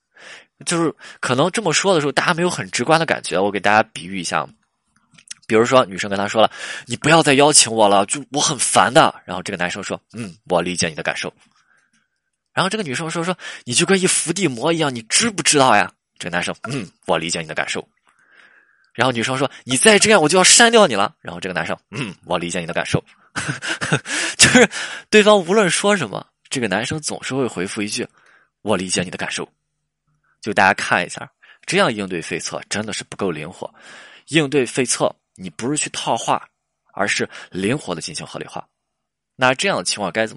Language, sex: Chinese, male